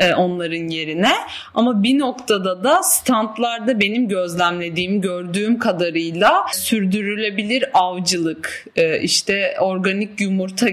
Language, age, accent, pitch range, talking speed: Turkish, 30-49, native, 175-210 Hz, 90 wpm